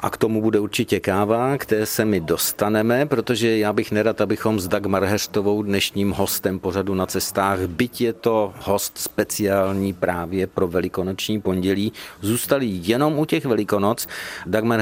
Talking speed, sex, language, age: 155 wpm, male, Czech, 50-69